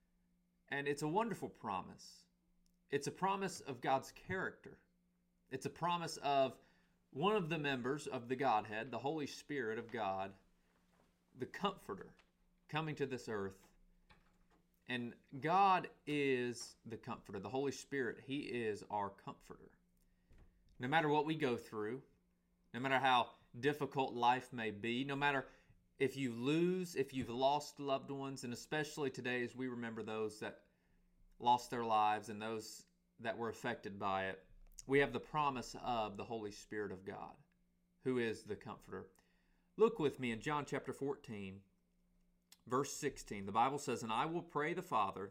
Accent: American